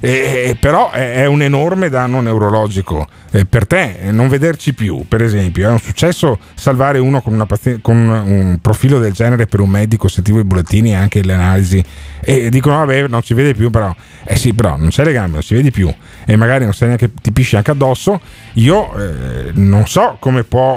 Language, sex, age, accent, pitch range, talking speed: Italian, male, 40-59, native, 100-130 Hz, 205 wpm